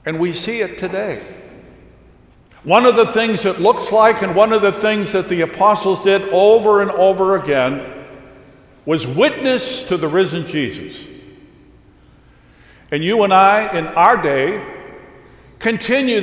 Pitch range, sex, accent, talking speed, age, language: 160-215 Hz, male, American, 145 wpm, 60-79, English